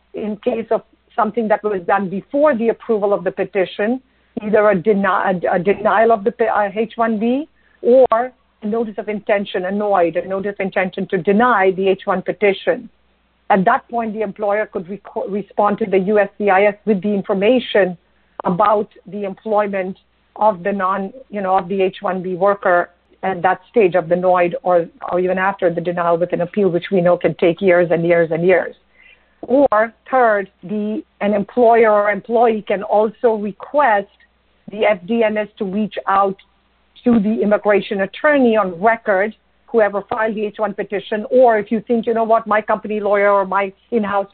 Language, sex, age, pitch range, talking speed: English, female, 50-69, 190-220 Hz, 170 wpm